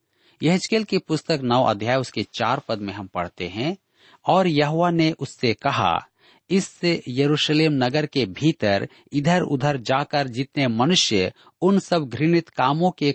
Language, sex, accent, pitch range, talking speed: Hindi, male, native, 115-165 Hz, 145 wpm